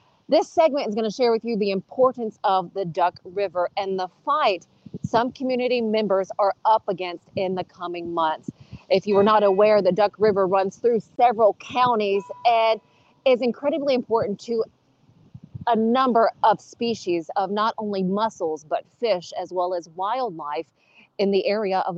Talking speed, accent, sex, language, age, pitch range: 170 wpm, American, female, English, 30-49, 180-235 Hz